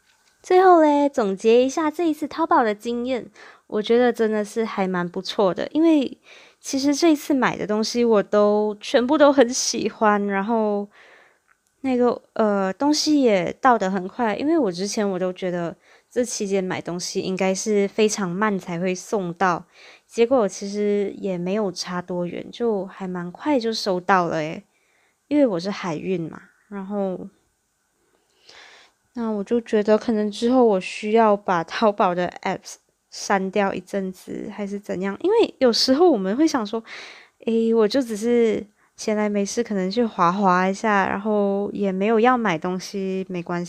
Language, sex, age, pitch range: Chinese, female, 20-39, 190-240 Hz